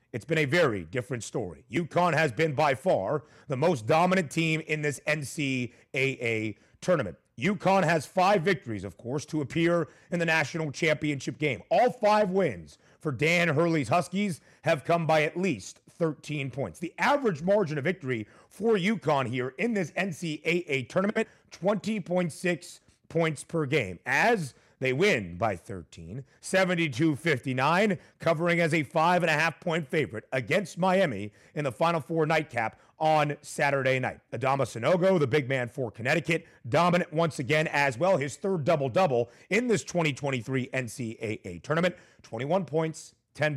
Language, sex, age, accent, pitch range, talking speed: English, male, 30-49, American, 130-175 Hz, 145 wpm